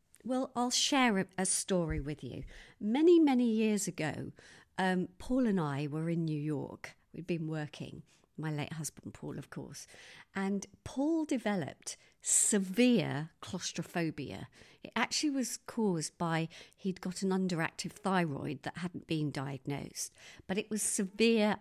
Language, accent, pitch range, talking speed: English, British, 155-210 Hz, 140 wpm